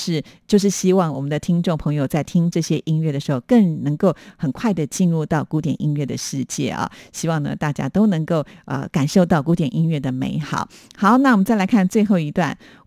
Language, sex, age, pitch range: Chinese, female, 50-69, 155-195 Hz